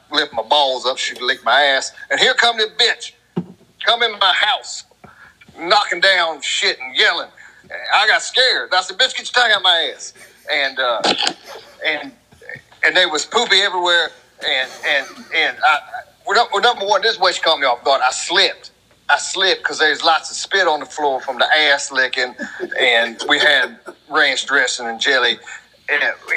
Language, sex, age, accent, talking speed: English, male, 40-59, American, 185 wpm